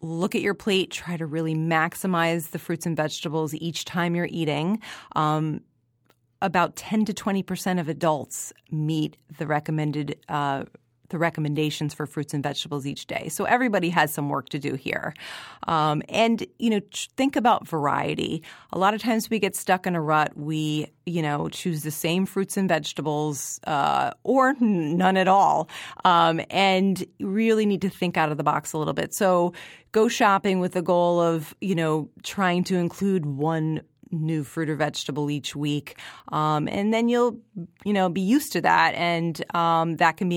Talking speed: 180 wpm